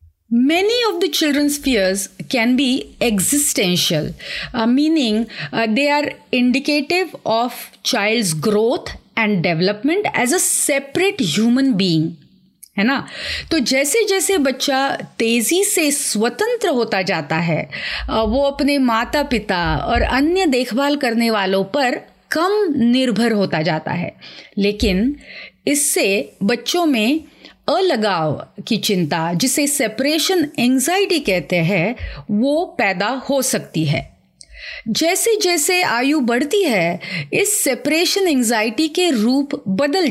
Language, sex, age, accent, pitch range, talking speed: Hindi, female, 30-49, native, 200-290 Hz, 115 wpm